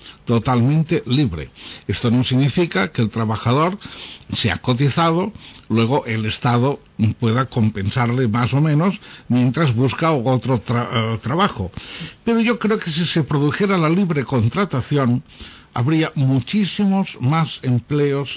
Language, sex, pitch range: Spanish, male, 115-165 Hz